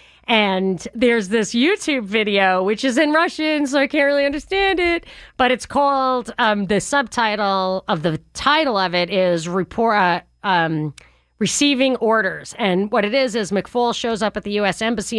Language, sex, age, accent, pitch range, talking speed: English, female, 40-59, American, 190-245 Hz, 175 wpm